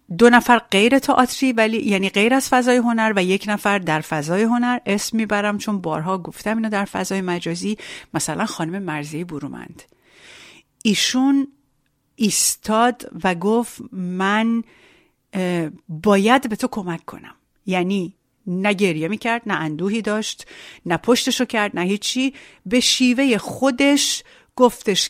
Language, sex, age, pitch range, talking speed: Persian, female, 40-59, 175-245 Hz, 130 wpm